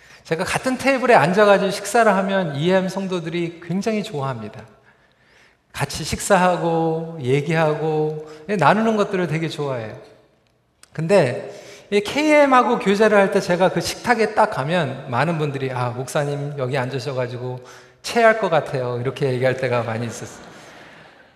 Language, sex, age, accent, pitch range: Korean, male, 40-59, native, 145-210 Hz